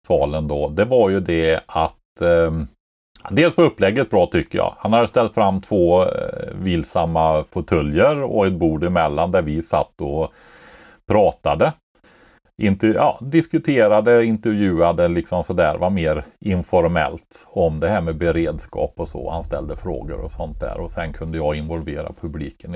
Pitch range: 80-110 Hz